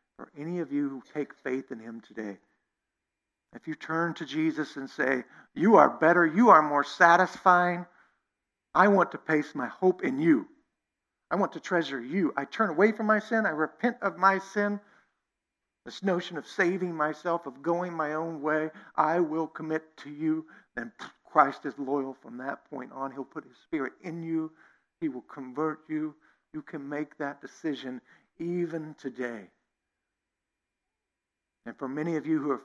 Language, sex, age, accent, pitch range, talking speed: English, male, 60-79, American, 150-195 Hz, 175 wpm